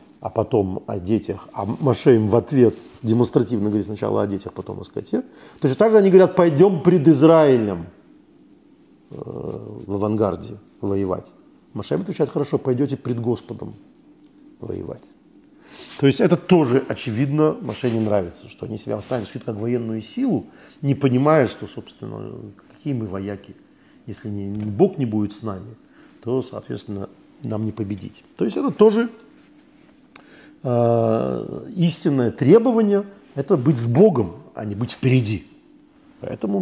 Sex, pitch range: male, 110-165 Hz